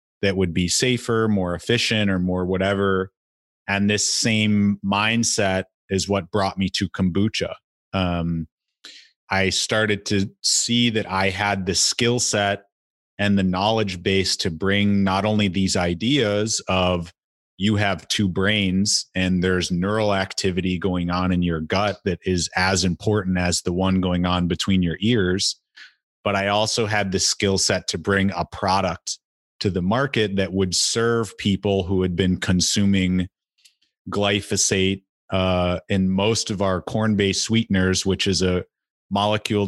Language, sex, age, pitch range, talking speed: English, male, 30-49, 95-105 Hz, 150 wpm